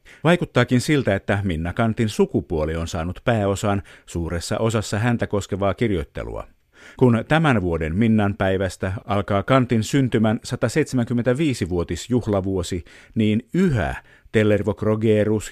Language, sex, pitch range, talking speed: Finnish, male, 95-120 Hz, 105 wpm